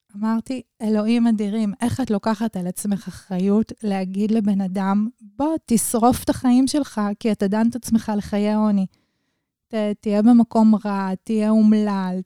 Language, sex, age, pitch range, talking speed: Hebrew, female, 20-39, 190-225 Hz, 140 wpm